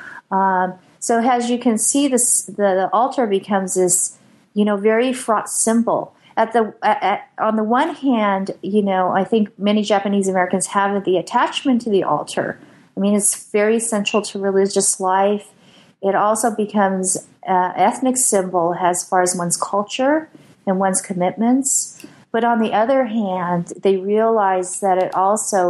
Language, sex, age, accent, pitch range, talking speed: English, female, 40-59, American, 185-220 Hz, 150 wpm